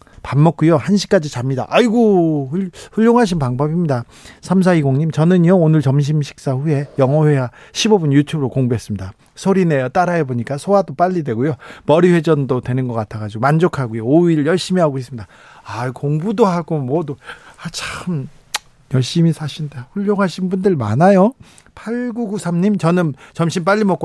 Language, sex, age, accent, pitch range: Korean, male, 40-59, native, 130-185 Hz